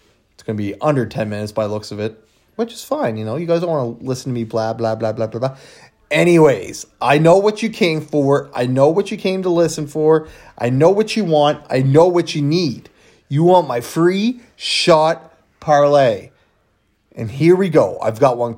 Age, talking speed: 30-49, 225 wpm